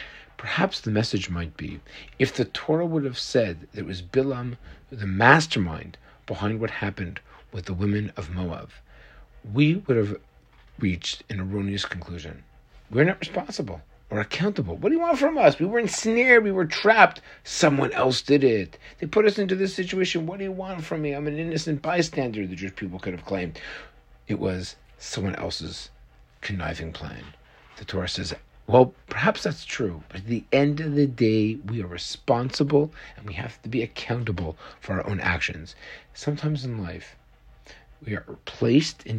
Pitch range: 90-140 Hz